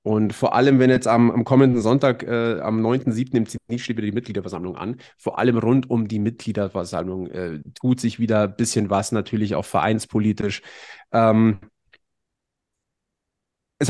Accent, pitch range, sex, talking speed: German, 110-135 Hz, male, 155 wpm